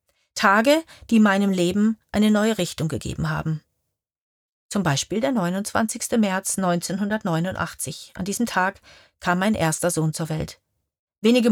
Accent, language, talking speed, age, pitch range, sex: German, German, 130 wpm, 40-59, 165-230 Hz, female